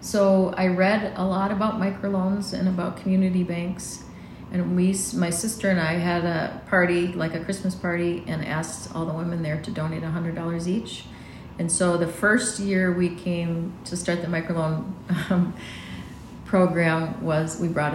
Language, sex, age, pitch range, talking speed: English, female, 40-59, 160-190 Hz, 175 wpm